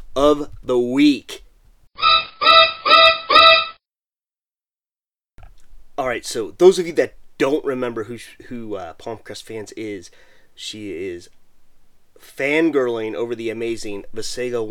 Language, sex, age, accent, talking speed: English, male, 30-49, American, 100 wpm